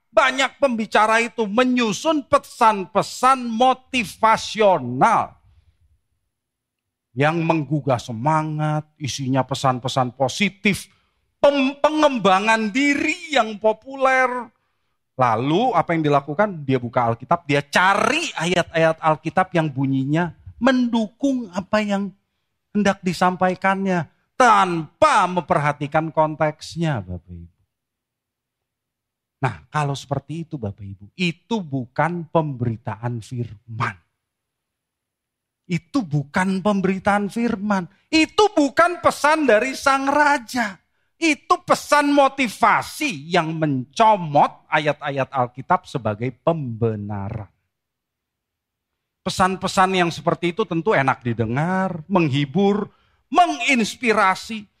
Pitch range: 135-225 Hz